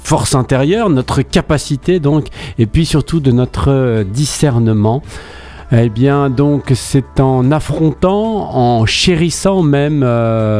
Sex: male